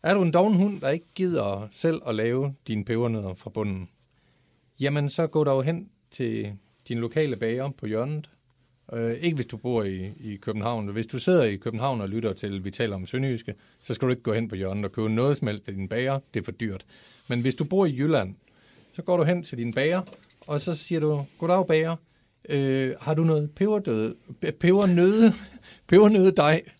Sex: male